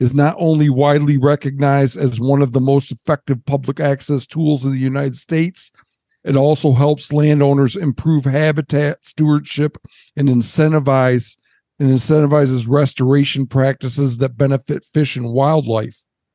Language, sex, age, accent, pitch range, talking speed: English, male, 50-69, American, 130-155 Hz, 130 wpm